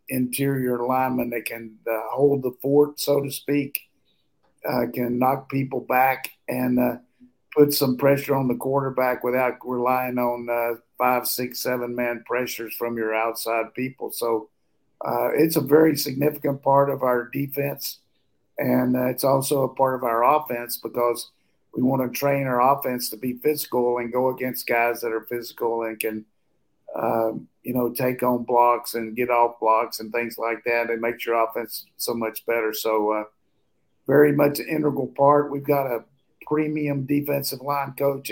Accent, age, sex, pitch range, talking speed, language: American, 50-69, male, 120-140 Hz, 170 wpm, English